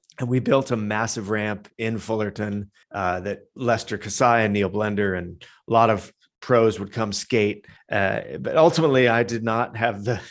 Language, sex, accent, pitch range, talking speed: English, male, American, 105-125 Hz, 180 wpm